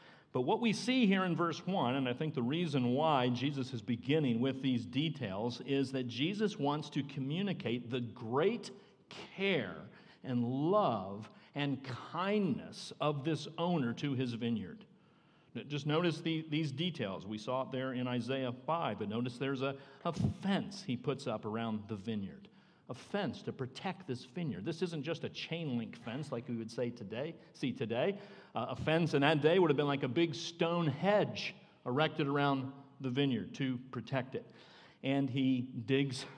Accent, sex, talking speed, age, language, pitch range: American, male, 175 wpm, 50-69, English, 125-165 Hz